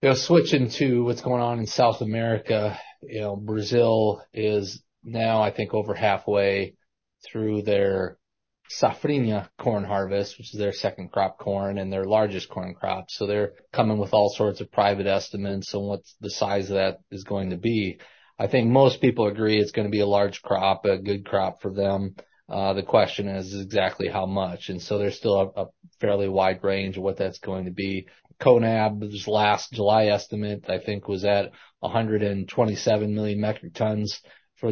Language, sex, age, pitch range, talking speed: English, male, 30-49, 100-110 Hz, 185 wpm